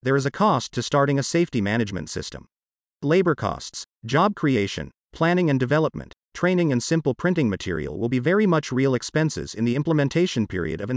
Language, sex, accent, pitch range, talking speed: English, male, American, 115-160 Hz, 180 wpm